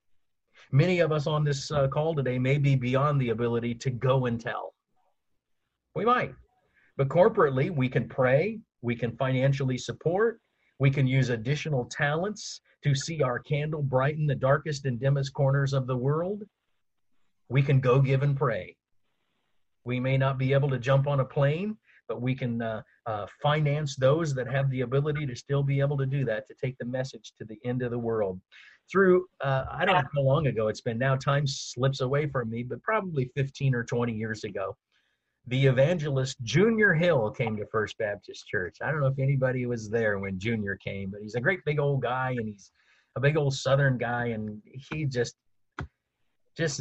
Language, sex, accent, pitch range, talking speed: English, male, American, 120-145 Hz, 190 wpm